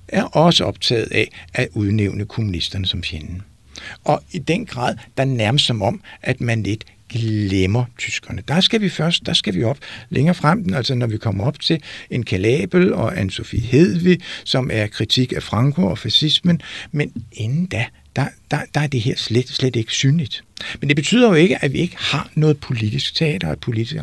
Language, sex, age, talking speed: Danish, male, 60-79, 200 wpm